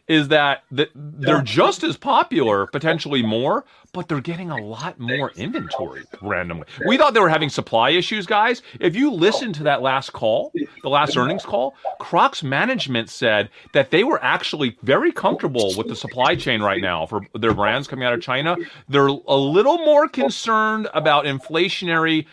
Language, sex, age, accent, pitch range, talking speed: English, male, 30-49, American, 130-180 Hz, 170 wpm